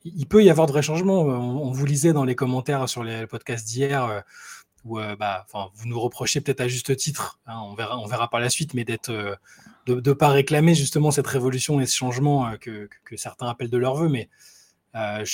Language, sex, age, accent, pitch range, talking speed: French, male, 20-39, French, 120-145 Hz, 230 wpm